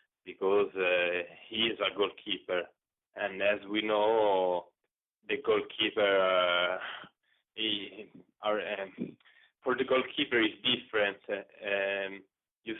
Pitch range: 90-110 Hz